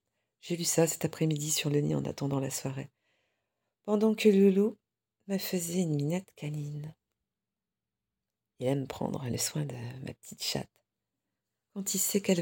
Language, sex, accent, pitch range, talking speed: French, female, French, 135-190 Hz, 160 wpm